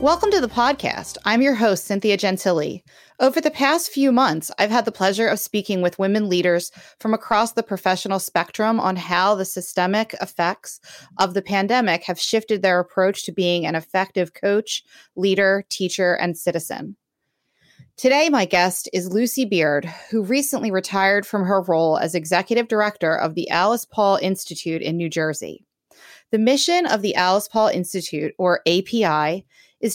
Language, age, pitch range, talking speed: English, 30-49, 180-225 Hz, 165 wpm